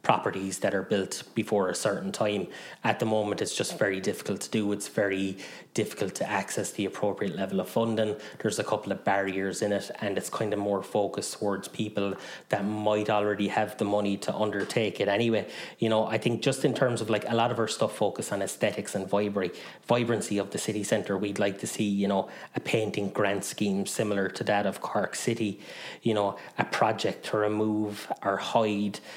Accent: Irish